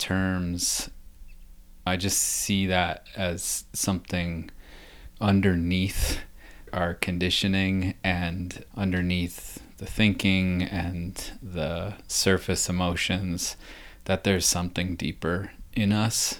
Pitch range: 85-95 Hz